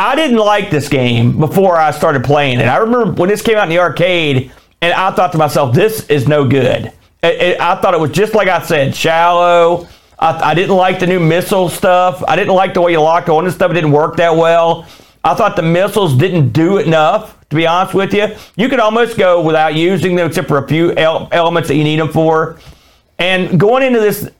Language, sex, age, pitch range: English, male, 40-59, 160-210 Hz